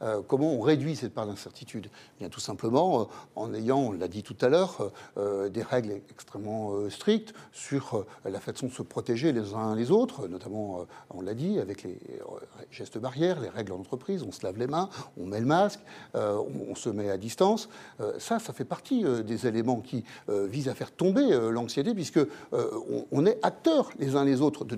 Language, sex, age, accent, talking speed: French, male, 60-79, French, 190 wpm